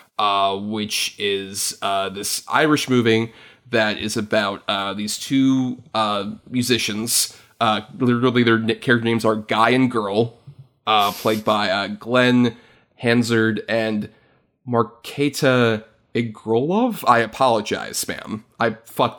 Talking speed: 120 wpm